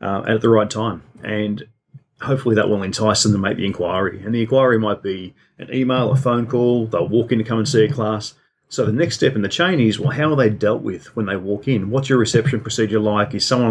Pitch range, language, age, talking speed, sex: 100-120 Hz, English, 30-49, 260 wpm, male